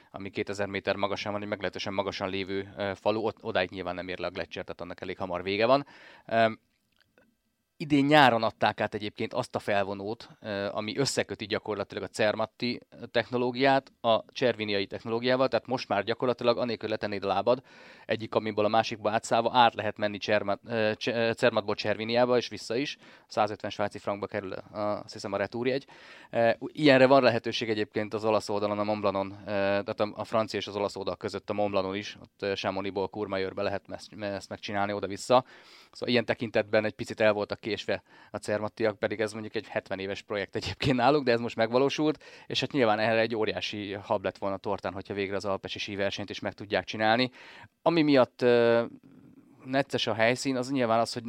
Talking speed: 175 wpm